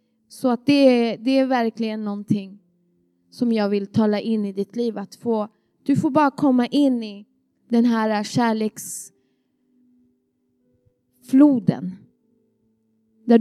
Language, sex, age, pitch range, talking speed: Swedish, female, 20-39, 200-245 Hz, 120 wpm